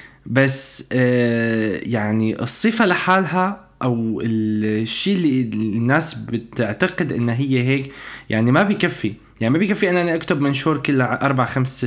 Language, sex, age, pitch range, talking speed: Arabic, male, 20-39, 110-135 Hz, 125 wpm